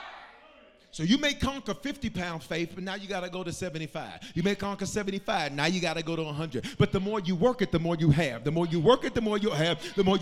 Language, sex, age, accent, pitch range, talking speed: English, male, 40-59, American, 170-235 Hz, 270 wpm